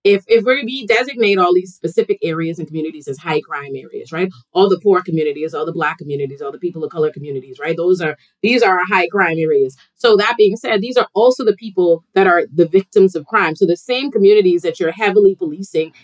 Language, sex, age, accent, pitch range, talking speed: English, female, 30-49, American, 170-245 Hz, 230 wpm